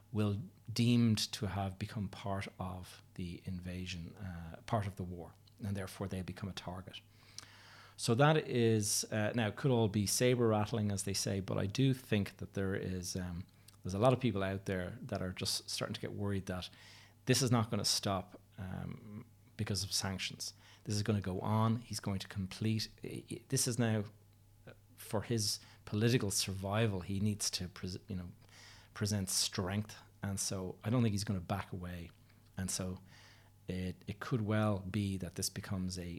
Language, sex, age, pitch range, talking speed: English, male, 30-49, 95-110 Hz, 190 wpm